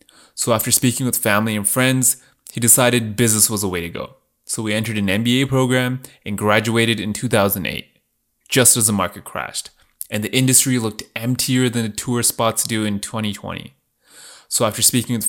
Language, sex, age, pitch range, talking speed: English, male, 20-39, 110-130 Hz, 180 wpm